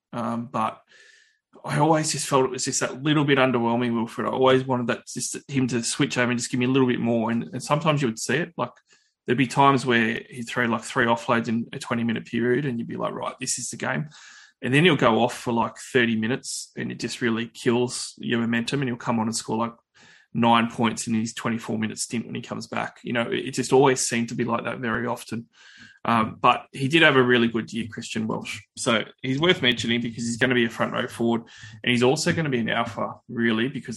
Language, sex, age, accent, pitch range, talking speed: English, male, 20-39, Australian, 115-130 Hz, 245 wpm